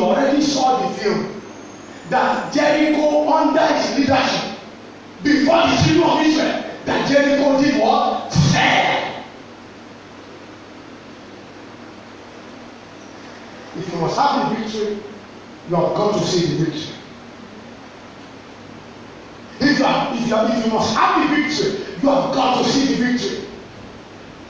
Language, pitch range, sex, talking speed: English, 195-290 Hz, male, 115 wpm